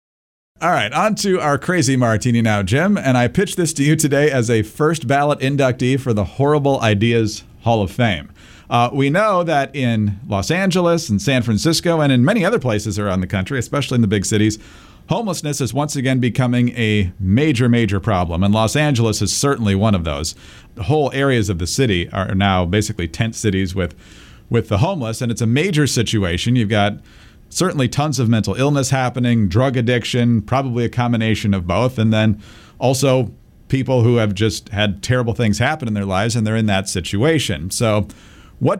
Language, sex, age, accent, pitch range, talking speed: English, male, 40-59, American, 105-140 Hz, 190 wpm